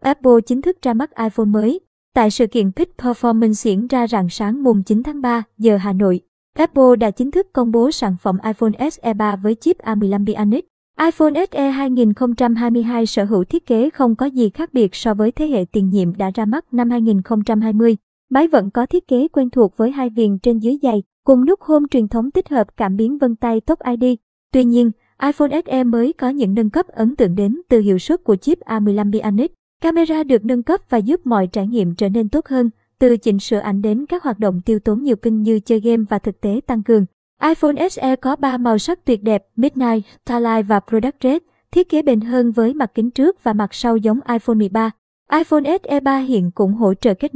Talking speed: 220 wpm